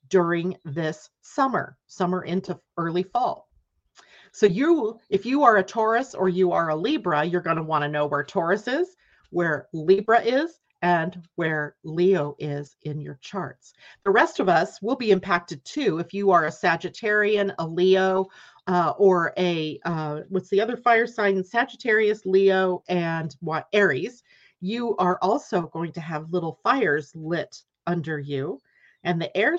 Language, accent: English, American